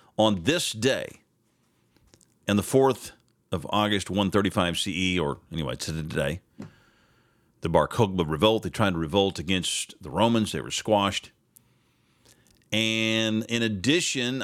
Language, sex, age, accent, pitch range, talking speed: English, male, 40-59, American, 100-120 Hz, 130 wpm